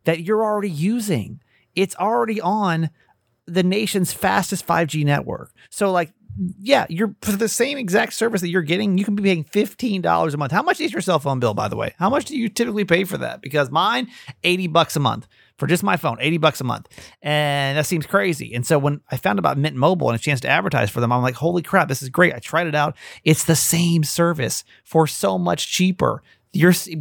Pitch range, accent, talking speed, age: 145-195 Hz, American, 225 wpm, 30-49